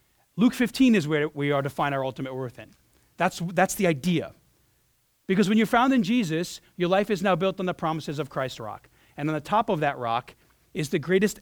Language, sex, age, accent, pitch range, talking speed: English, male, 40-59, American, 140-195 Hz, 225 wpm